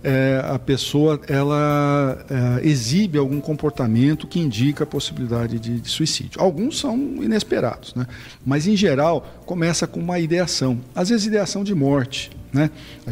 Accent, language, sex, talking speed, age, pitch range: Brazilian, Portuguese, male, 150 wpm, 50-69, 125-165 Hz